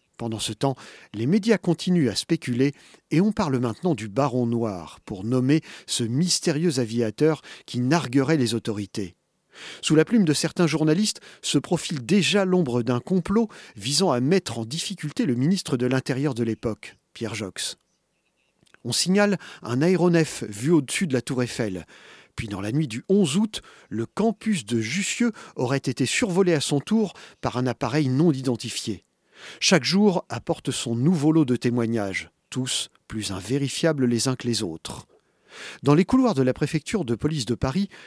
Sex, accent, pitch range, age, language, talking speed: male, French, 120-175 Hz, 40-59, French, 170 wpm